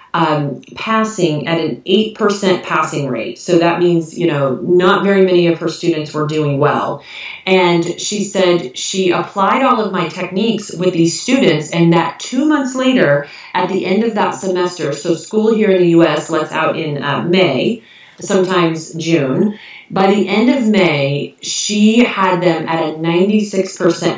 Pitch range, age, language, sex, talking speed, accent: 170-200 Hz, 30-49, English, female, 170 wpm, American